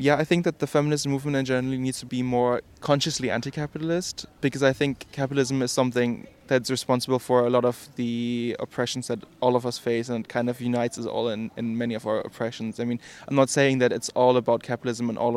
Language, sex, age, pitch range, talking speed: English, male, 20-39, 120-135 Hz, 225 wpm